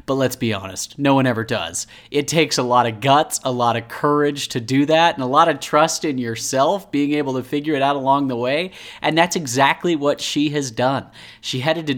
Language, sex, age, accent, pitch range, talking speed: English, male, 30-49, American, 115-145 Hz, 235 wpm